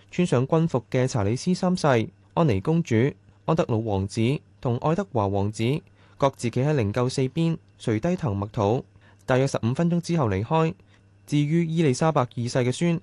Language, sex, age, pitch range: Chinese, male, 20-39, 110-155 Hz